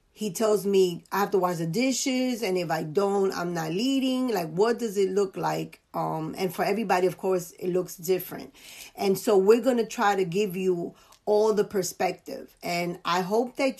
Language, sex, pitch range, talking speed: English, female, 175-215 Hz, 205 wpm